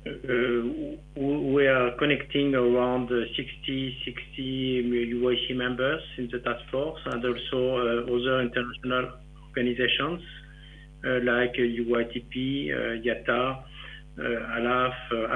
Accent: French